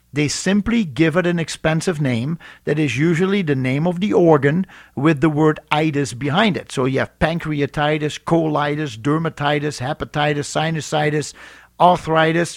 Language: English